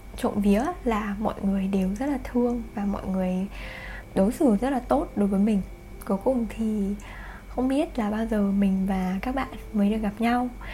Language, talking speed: Vietnamese, 200 wpm